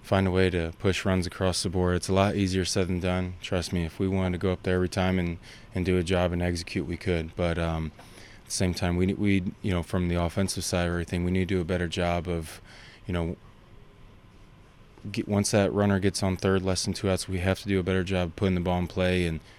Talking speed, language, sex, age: 265 wpm, English, male, 20-39